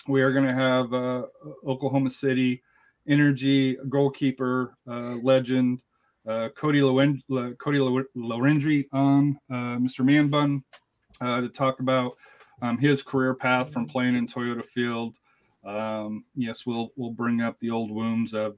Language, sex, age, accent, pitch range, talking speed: English, male, 30-49, American, 115-130 Hz, 150 wpm